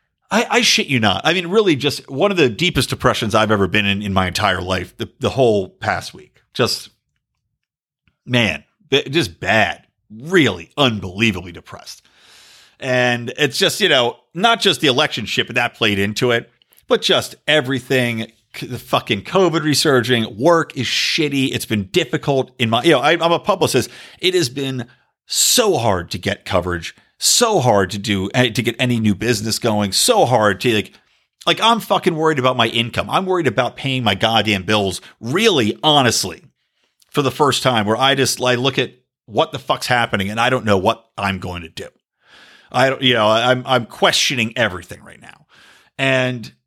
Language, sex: English, male